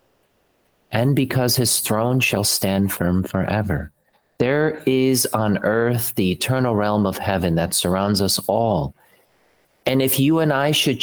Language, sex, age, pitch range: English, male, 40-59, 100-135 Hz